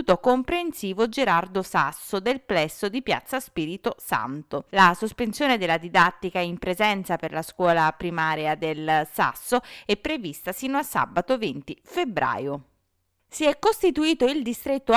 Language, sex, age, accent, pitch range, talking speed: Italian, female, 30-49, native, 180-235 Hz, 130 wpm